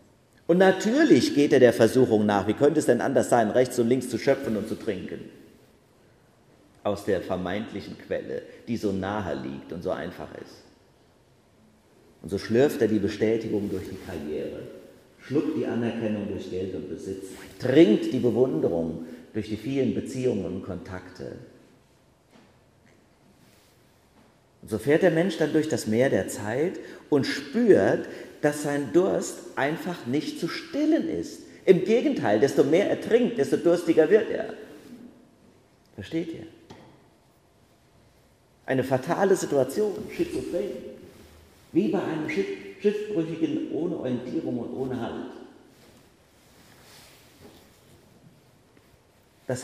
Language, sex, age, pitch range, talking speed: German, male, 40-59, 105-165 Hz, 125 wpm